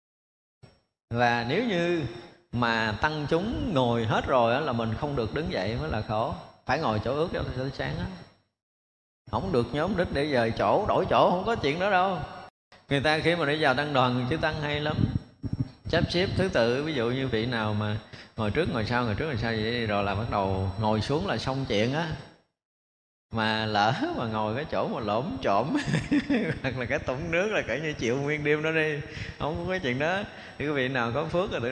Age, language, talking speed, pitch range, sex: 20-39, Vietnamese, 220 wpm, 110-145 Hz, male